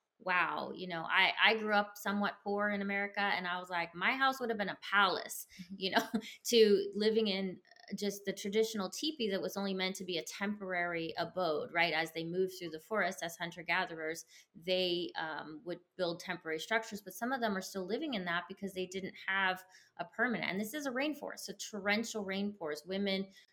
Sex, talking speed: female, 205 wpm